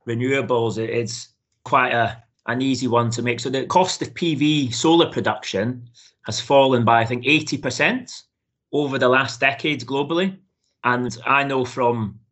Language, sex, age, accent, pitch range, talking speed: English, male, 30-49, British, 110-130 Hz, 150 wpm